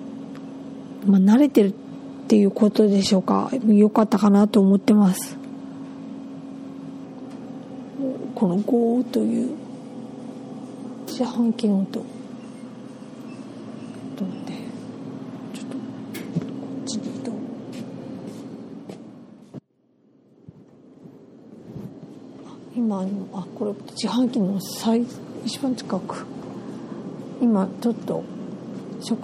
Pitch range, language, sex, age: 220-255 Hz, Japanese, female, 40-59